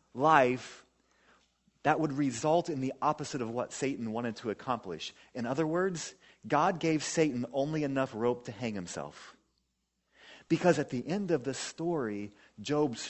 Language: English